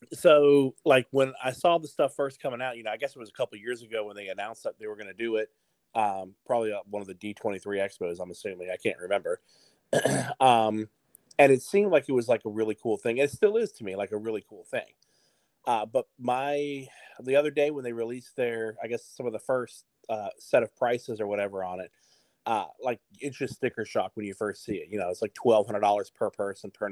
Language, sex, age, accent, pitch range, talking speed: English, male, 30-49, American, 105-130 Hz, 240 wpm